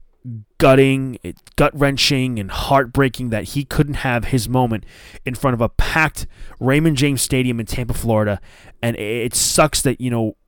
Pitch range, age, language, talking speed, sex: 110-140 Hz, 20-39, English, 165 wpm, male